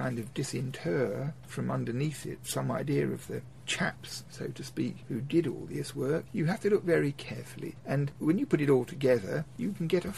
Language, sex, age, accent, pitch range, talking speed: English, male, 50-69, British, 125-160 Hz, 210 wpm